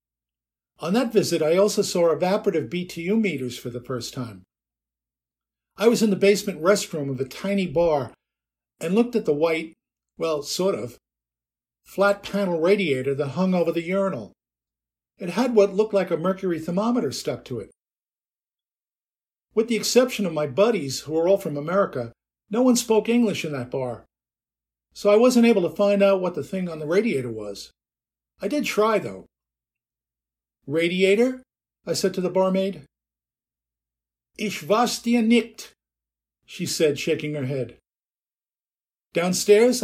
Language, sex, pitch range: English, male, 120-200 Hz